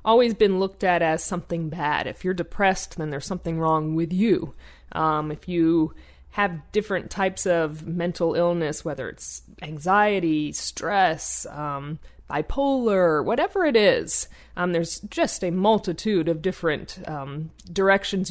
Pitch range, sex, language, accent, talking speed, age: 160-205 Hz, female, English, American, 140 wpm, 30-49